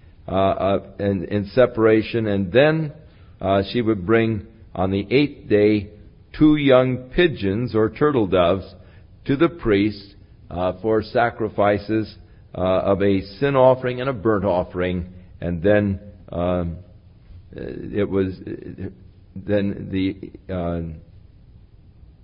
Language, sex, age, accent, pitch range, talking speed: English, male, 50-69, American, 90-110 Hz, 115 wpm